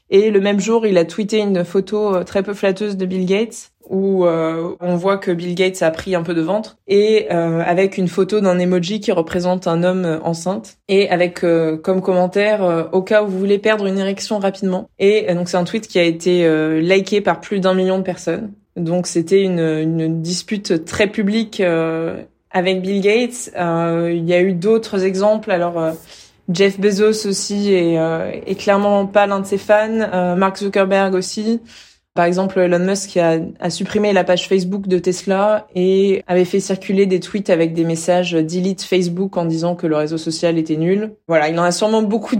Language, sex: French, female